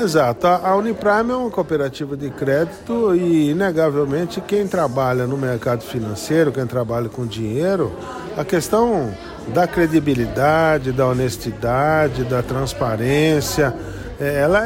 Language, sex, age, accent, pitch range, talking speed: Portuguese, male, 50-69, Brazilian, 130-180 Hz, 115 wpm